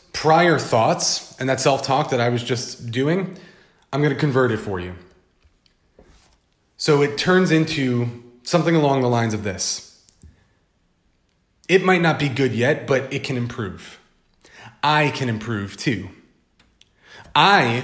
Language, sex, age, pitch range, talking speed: English, male, 30-49, 105-155 Hz, 145 wpm